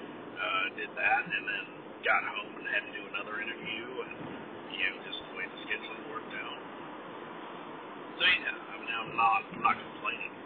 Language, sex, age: English, male, 50-69